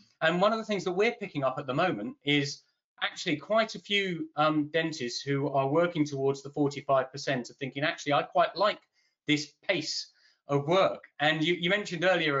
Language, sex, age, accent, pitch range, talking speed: English, male, 30-49, British, 135-175 Hz, 200 wpm